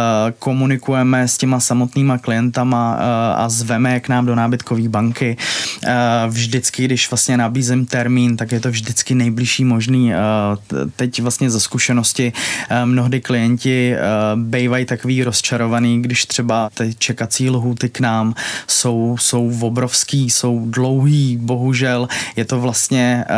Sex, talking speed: male, 125 wpm